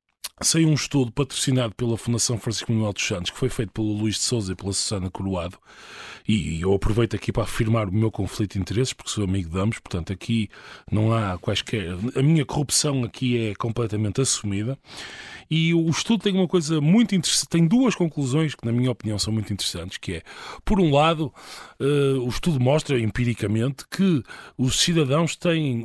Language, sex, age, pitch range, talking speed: Portuguese, male, 20-39, 110-155 Hz, 185 wpm